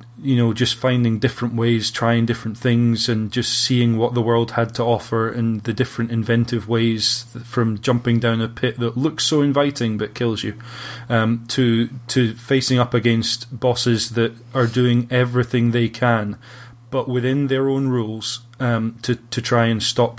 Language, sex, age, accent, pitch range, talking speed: English, male, 20-39, British, 115-125 Hz, 170 wpm